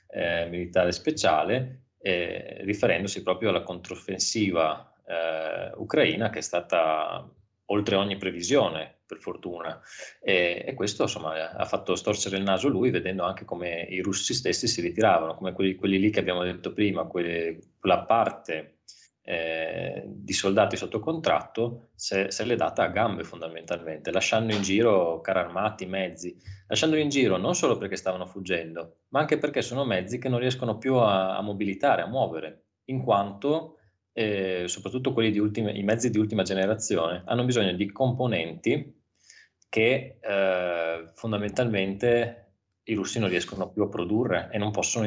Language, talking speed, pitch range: Italian, 150 wpm, 90-110 Hz